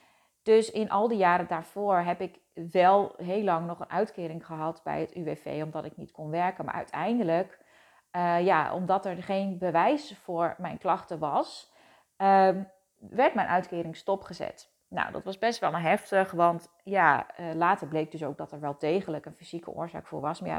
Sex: female